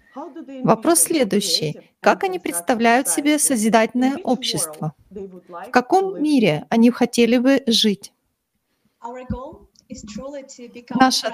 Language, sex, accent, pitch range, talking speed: Russian, female, native, 240-285 Hz, 85 wpm